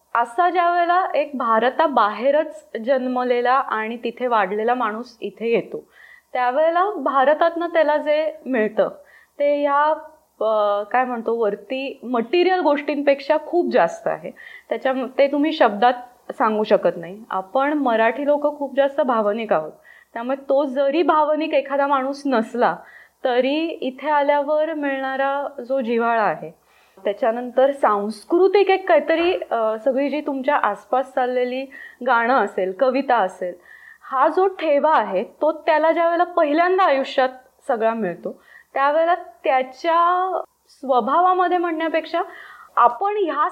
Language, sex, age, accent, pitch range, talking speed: Marathi, female, 20-39, native, 240-315 Hz, 120 wpm